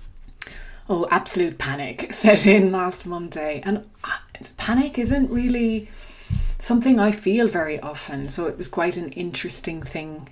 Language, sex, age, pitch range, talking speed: English, female, 30-49, 150-200 Hz, 135 wpm